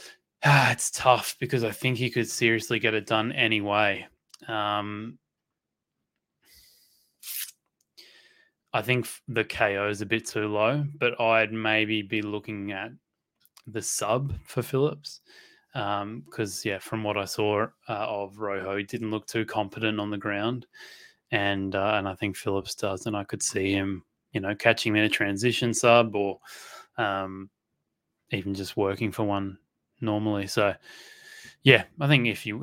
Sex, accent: male, Australian